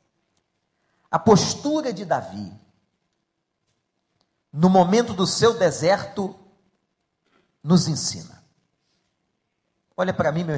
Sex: male